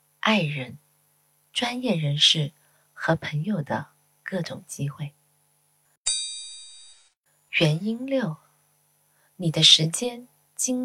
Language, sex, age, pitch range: Chinese, female, 20-39, 150-215 Hz